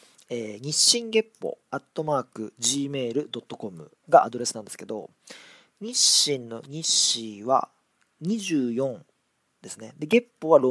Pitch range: 115-155 Hz